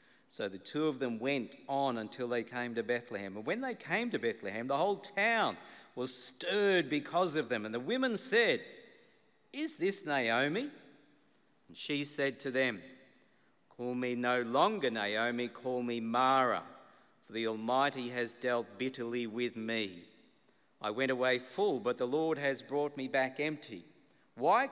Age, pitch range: 50-69, 120-145 Hz